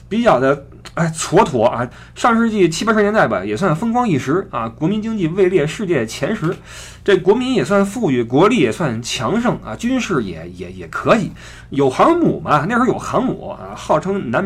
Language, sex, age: Chinese, male, 20-39